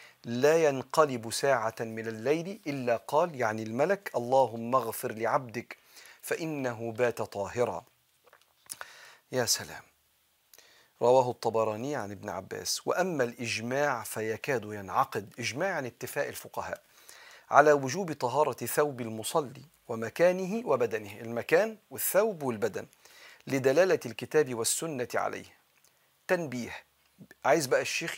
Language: Arabic